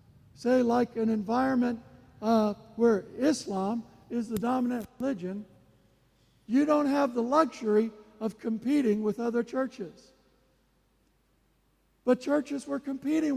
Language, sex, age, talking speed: English, male, 60-79, 110 wpm